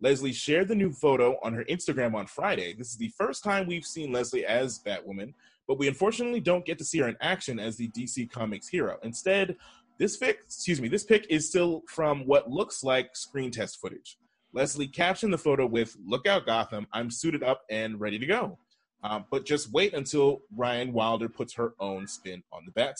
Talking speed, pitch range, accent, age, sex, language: 200 wpm, 115-165 Hz, American, 30-49, male, English